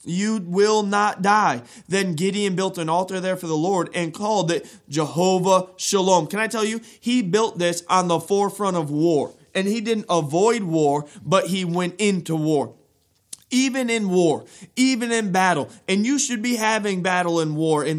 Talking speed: 185 wpm